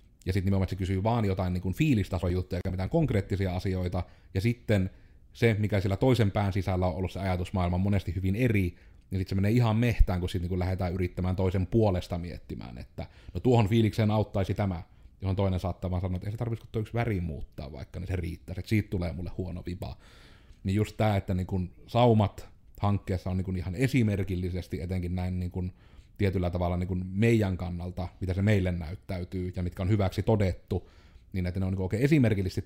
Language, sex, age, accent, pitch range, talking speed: Finnish, male, 30-49, native, 90-105 Hz, 200 wpm